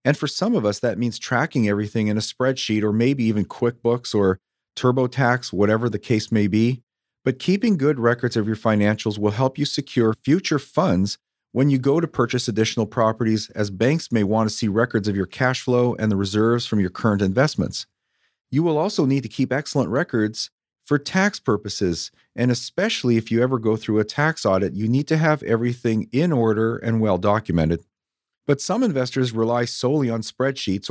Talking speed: 190 wpm